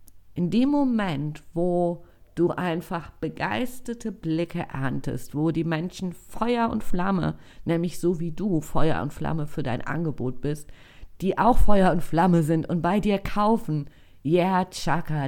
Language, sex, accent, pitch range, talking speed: German, female, German, 120-190 Hz, 155 wpm